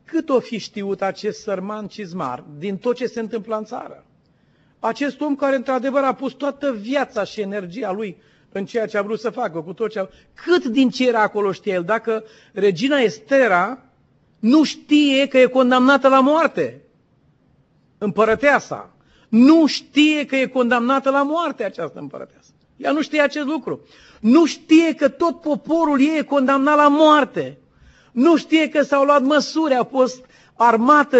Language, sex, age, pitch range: Romanian, male, 50-69, 220-285 Hz